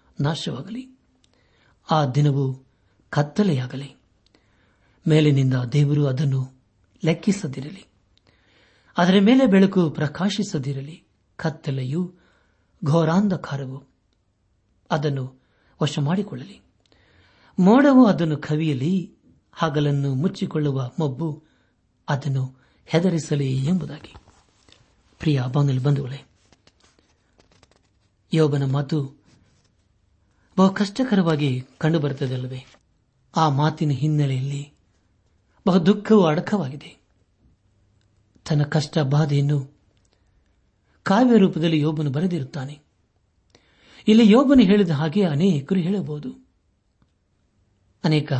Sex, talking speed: male, 60 wpm